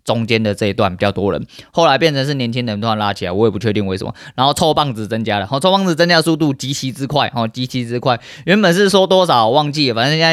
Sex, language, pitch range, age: male, Chinese, 115-155 Hz, 20-39